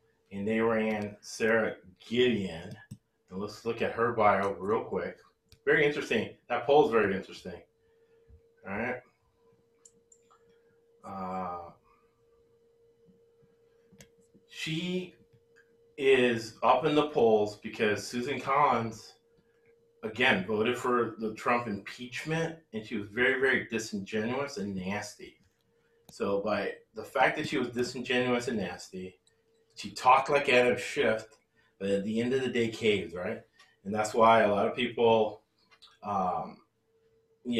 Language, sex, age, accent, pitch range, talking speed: English, male, 30-49, American, 110-145 Hz, 125 wpm